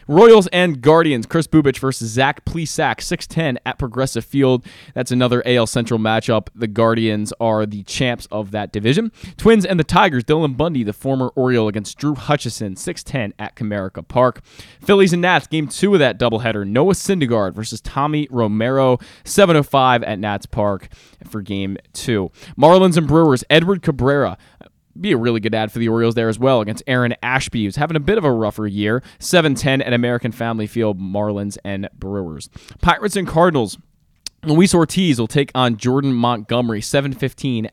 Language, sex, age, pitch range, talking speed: English, male, 20-39, 110-145 Hz, 175 wpm